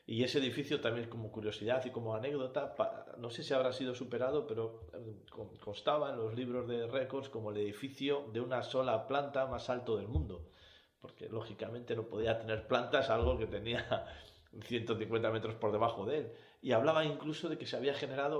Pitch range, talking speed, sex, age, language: 110-135 Hz, 185 wpm, male, 40-59, Spanish